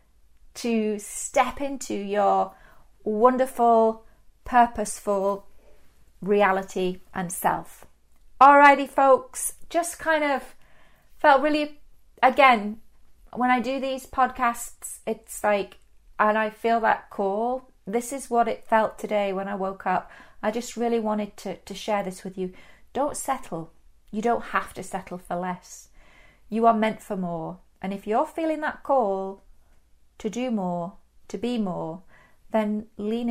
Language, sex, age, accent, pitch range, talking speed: English, female, 30-49, British, 195-255 Hz, 135 wpm